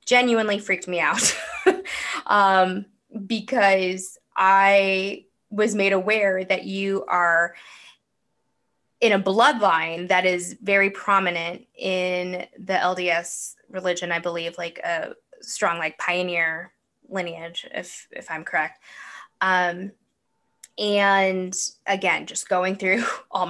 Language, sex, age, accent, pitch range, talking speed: English, female, 20-39, American, 175-210 Hz, 110 wpm